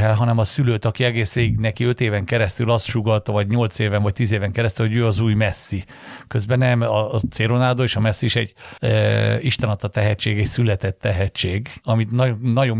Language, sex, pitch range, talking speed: Hungarian, male, 105-125 Hz, 195 wpm